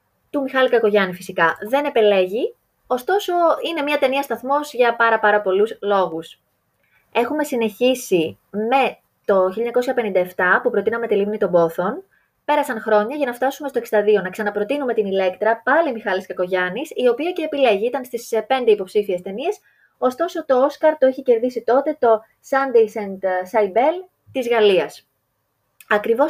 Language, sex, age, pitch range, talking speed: Greek, female, 20-39, 195-260 Hz, 145 wpm